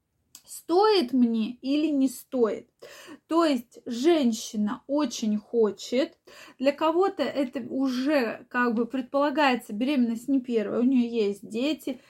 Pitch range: 230-310 Hz